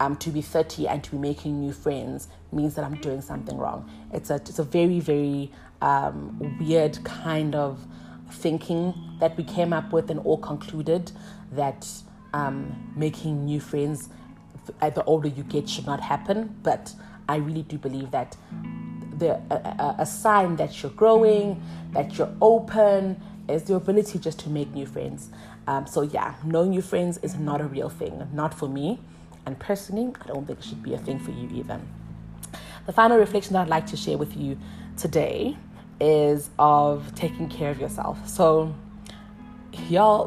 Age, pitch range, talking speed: 30-49, 140-185 Hz, 175 wpm